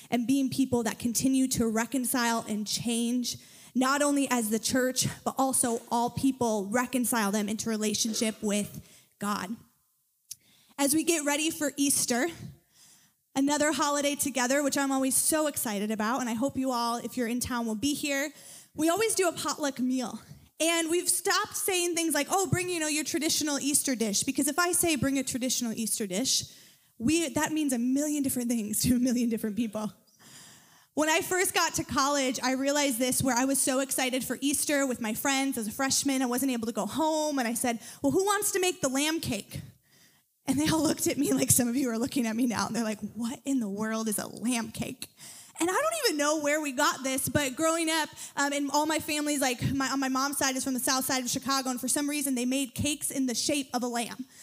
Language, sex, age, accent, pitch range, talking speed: English, female, 20-39, American, 235-295 Hz, 220 wpm